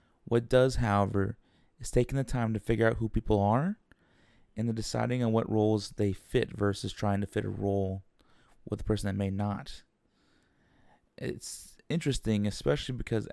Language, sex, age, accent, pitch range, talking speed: English, male, 30-49, American, 100-120 Hz, 165 wpm